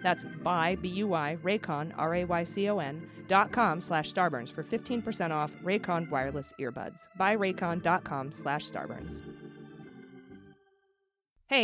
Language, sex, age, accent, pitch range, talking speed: English, female, 30-49, American, 165-205 Hz, 100 wpm